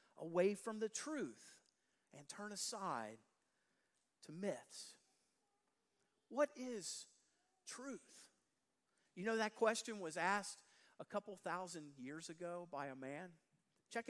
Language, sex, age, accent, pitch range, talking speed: English, male, 50-69, American, 165-225 Hz, 115 wpm